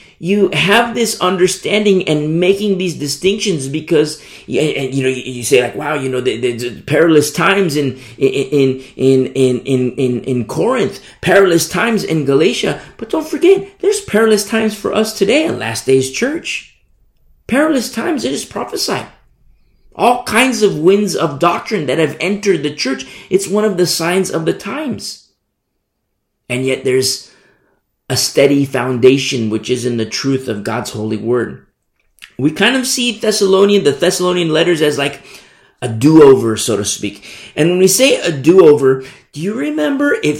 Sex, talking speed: male, 165 wpm